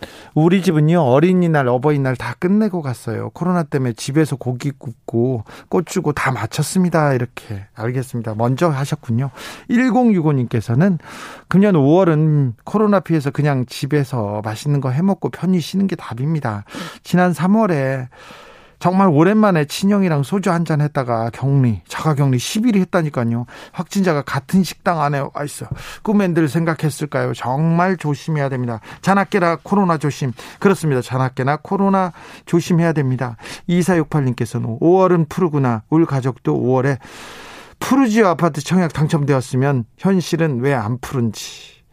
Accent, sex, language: native, male, Korean